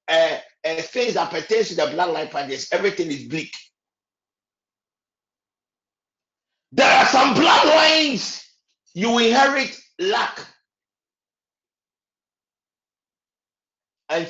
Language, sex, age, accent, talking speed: English, male, 50-69, Nigerian, 90 wpm